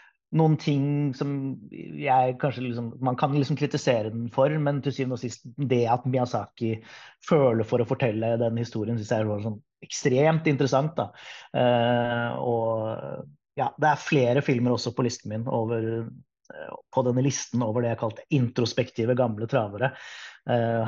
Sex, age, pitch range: male, 30-49, 115-135 Hz